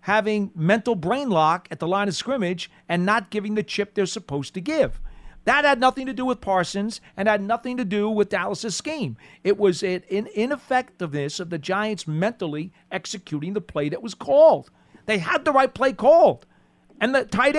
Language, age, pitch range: English, 40-59, 165-220 Hz